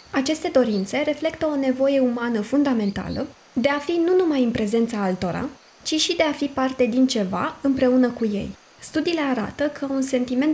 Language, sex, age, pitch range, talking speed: Romanian, female, 20-39, 225-285 Hz, 175 wpm